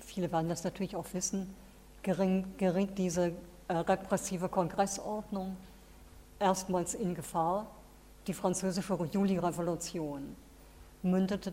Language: German